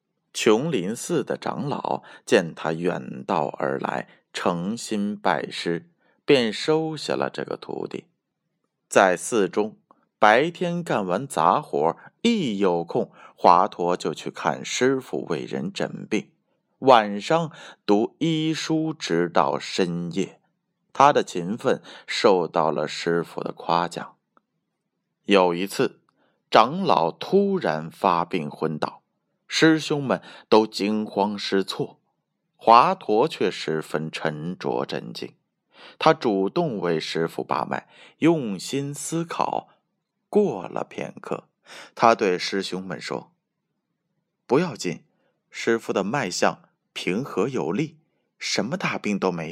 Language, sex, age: Chinese, male, 20-39